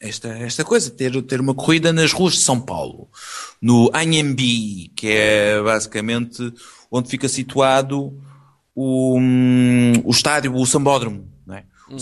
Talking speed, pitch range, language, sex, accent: 140 wpm, 110-155 Hz, English, male, Portuguese